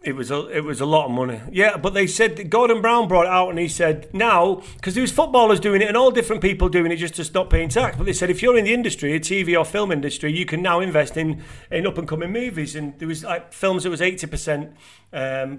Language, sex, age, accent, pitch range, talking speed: English, male, 40-59, British, 145-185 Hz, 280 wpm